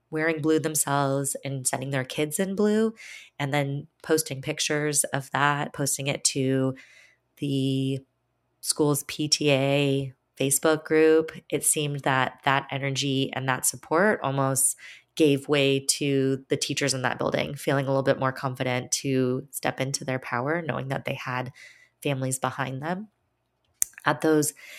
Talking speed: 145 wpm